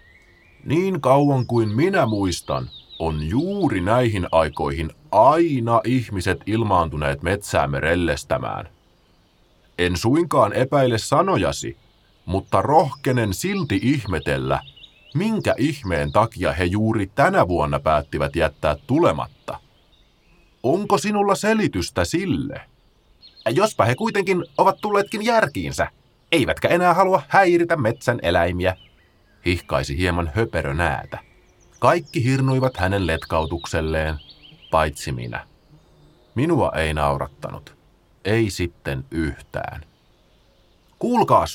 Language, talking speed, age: Finnish, 90 wpm, 30-49